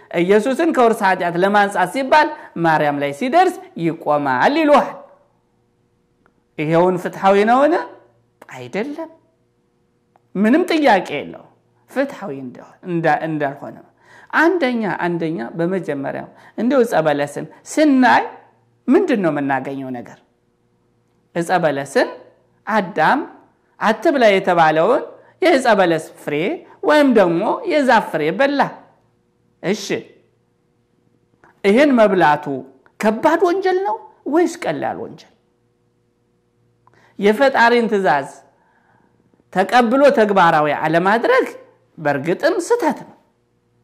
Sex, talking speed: male, 75 wpm